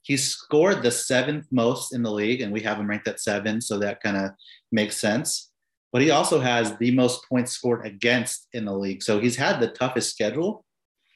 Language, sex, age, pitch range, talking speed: English, male, 30-49, 105-125 Hz, 210 wpm